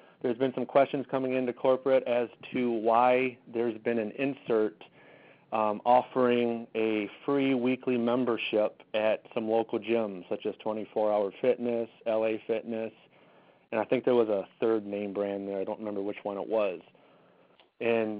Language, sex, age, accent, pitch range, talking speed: English, male, 30-49, American, 105-120 Hz, 160 wpm